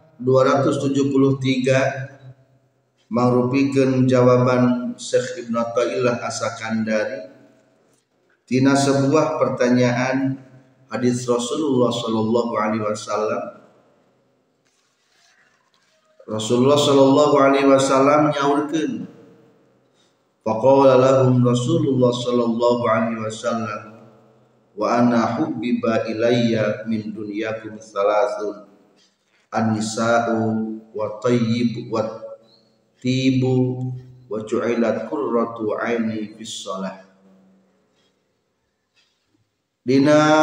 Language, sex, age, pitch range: Indonesian, male, 40-59, 110-135 Hz